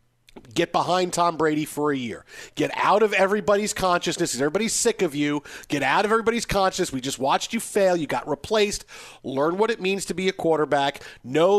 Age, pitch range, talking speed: 40-59, 155-205 Hz, 195 wpm